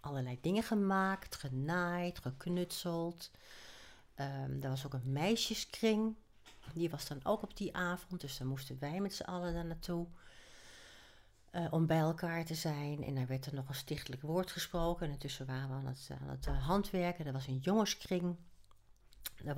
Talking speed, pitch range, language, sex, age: 170 wpm, 135-170 Hz, Dutch, female, 60-79